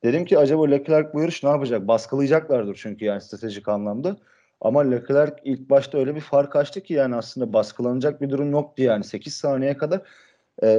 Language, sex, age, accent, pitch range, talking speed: Turkish, male, 40-59, native, 125-160 Hz, 185 wpm